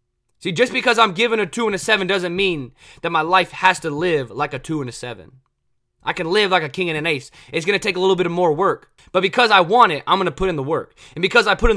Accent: American